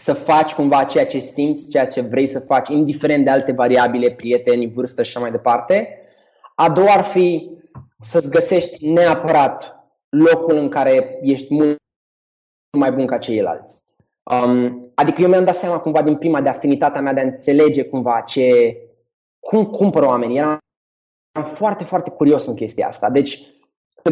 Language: Romanian